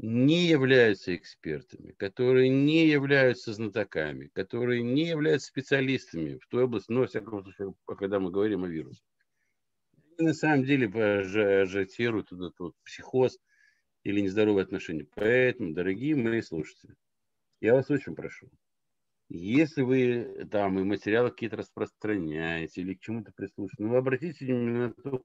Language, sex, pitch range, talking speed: Russian, male, 110-165 Hz, 140 wpm